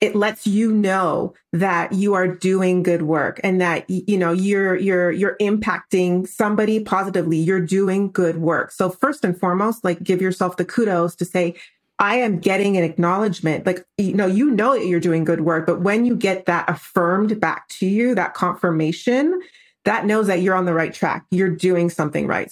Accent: American